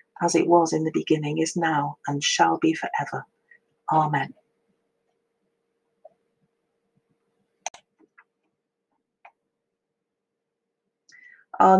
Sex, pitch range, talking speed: female, 160-215 Hz, 70 wpm